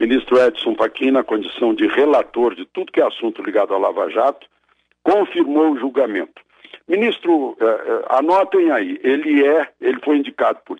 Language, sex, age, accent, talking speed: Portuguese, male, 60-79, Brazilian, 155 wpm